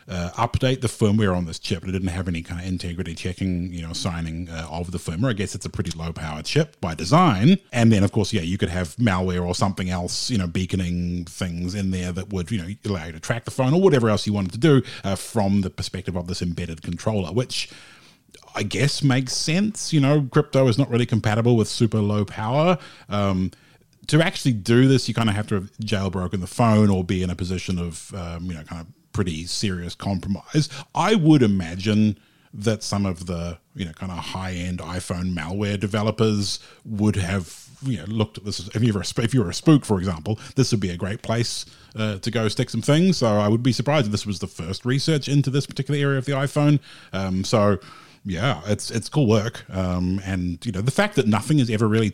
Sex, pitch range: male, 90-125 Hz